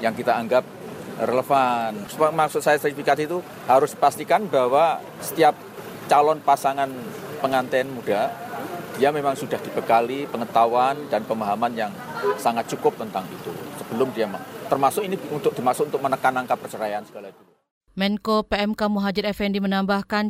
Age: 40-59